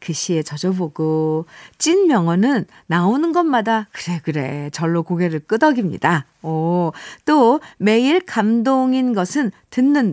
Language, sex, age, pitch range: Korean, female, 50-69, 170-265 Hz